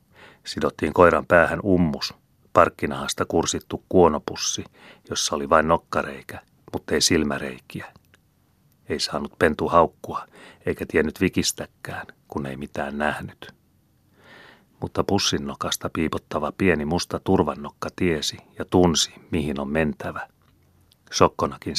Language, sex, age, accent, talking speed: Finnish, male, 30-49, native, 105 wpm